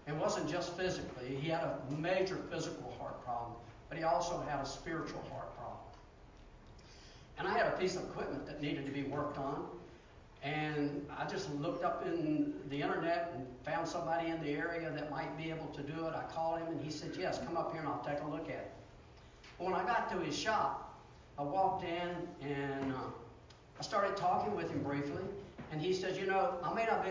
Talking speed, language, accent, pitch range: 210 wpm, English, American, 140-175 Hz